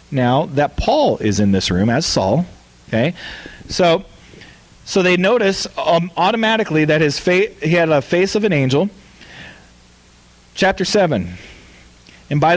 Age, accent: 40-59, American